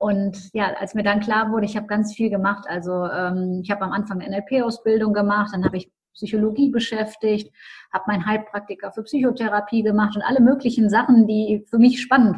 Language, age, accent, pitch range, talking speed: German, 30-49, German, 205-240 Hz, 195 wpm